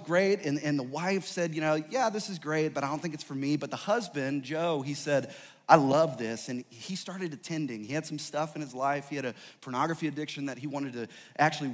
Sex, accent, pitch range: male, American, 115-150 Hz